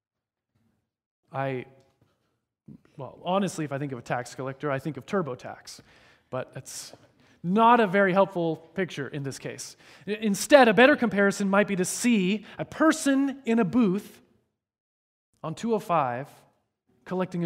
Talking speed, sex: 140 wpm, male